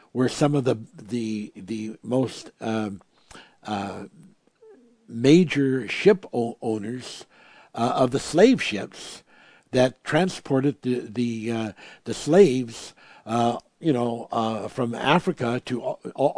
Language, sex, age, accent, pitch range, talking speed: English, male, 60-79, American, 115-135 Hz, 120 wpm